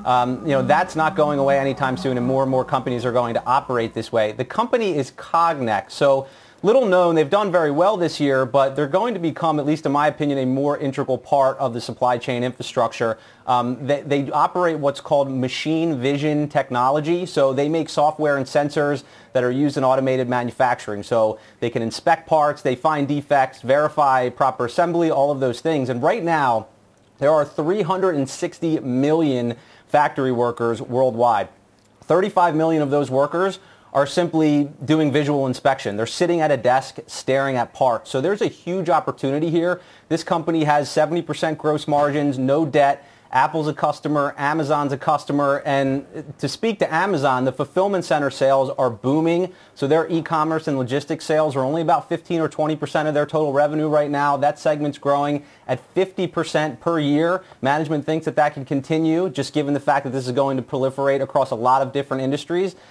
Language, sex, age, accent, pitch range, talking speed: English, male, 30-49, American, 130-160 Hz, 185 wpm